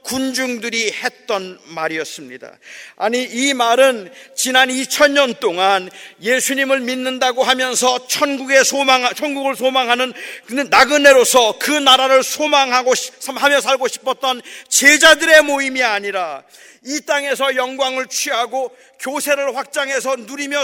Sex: male